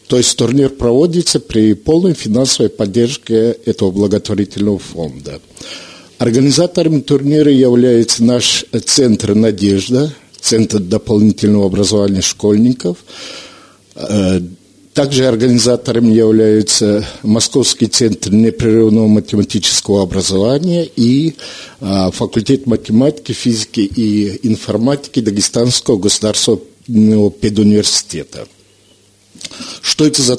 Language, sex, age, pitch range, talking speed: Russian, male, 50-69, 105-145 Hz, 80 wpm